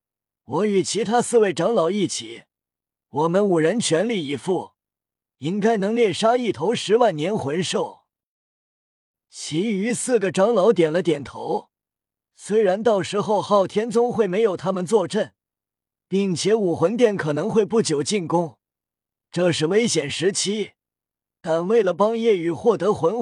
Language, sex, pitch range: Chinese, male, 160-220 Hz